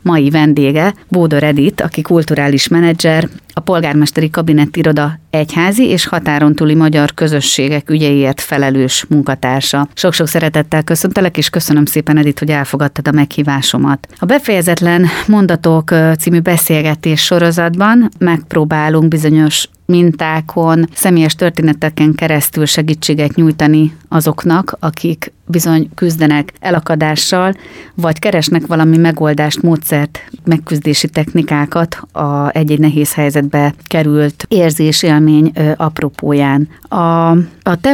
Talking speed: 110 wpm